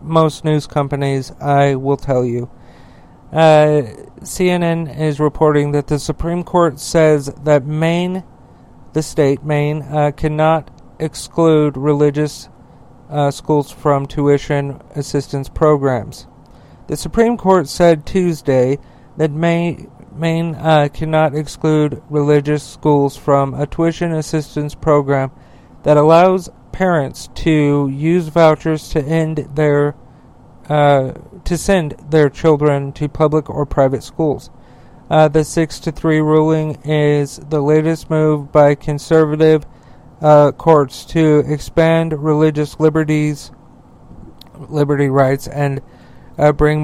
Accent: American